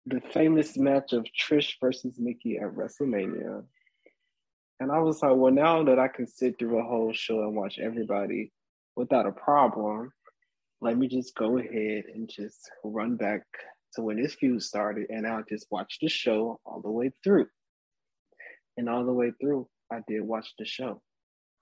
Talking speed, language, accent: 175 wpm, English, American